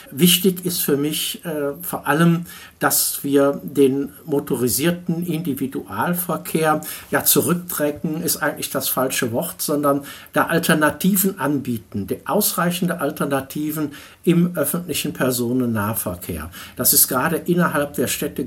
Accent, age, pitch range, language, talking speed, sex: German, 60-79, 140-180 Hz, German, 110 wpm, male